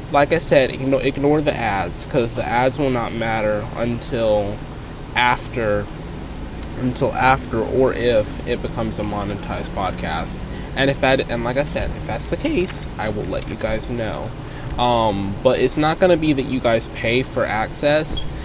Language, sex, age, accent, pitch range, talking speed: English, male, 20-39, American, 110-135 Hz, 180 wpm